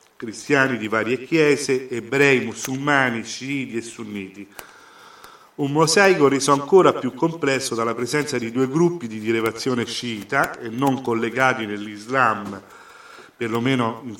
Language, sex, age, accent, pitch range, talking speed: Italian, male, 40-59, native, 115-145 Hz, 125 wpm